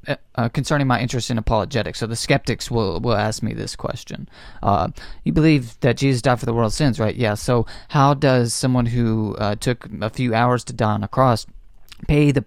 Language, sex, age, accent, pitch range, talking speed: English, male, 30-49, American, 110-135 Hz, 210 wpm